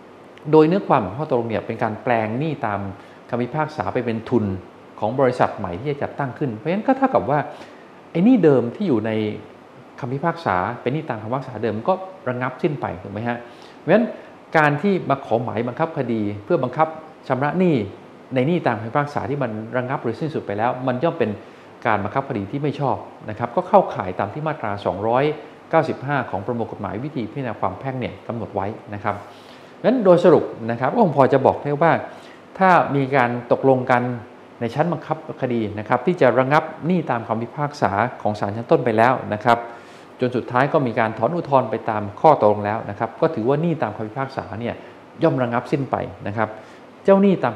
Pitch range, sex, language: 110-150 Hz, male, Thai